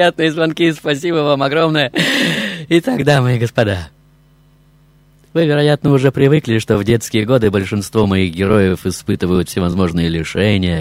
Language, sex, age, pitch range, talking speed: Russian, male, 20-39, 80-130 Hz, 130 wpm